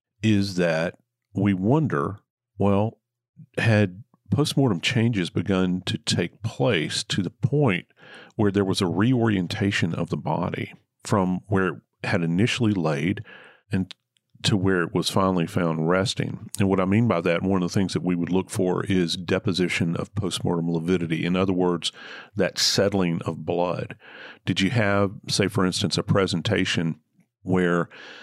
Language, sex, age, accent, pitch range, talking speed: English, male, 40-59, American, 90-110 Hz, 155 wpm